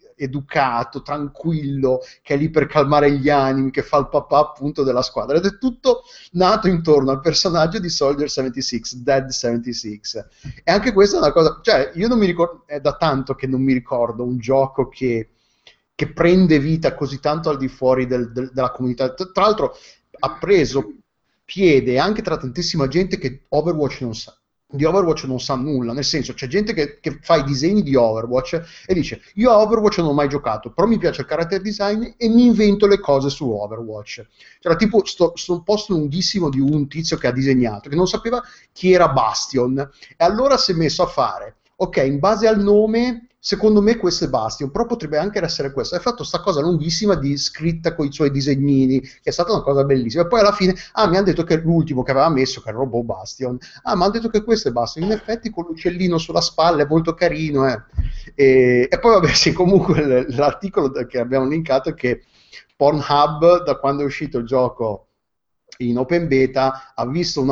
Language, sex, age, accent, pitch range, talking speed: Italian, male, 30-49, native, 130-180 Hz, 200 wpm